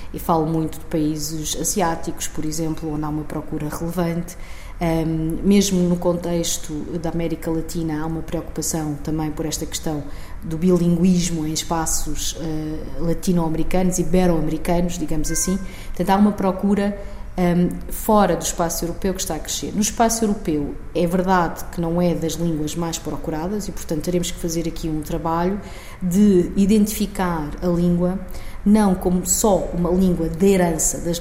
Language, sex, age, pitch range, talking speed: Portuguese, female, 20-39, 160-180 Hz, 155 wpm